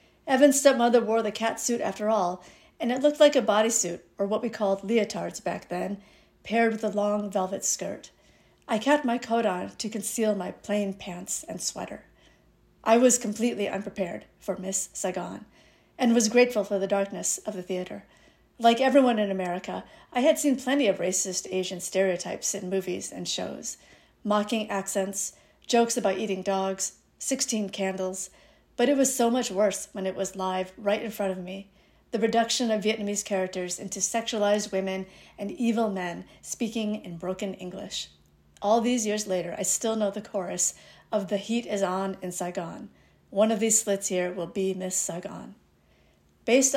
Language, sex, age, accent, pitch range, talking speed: English, female, 50-69, American, 190-230 Hz, 175 wpm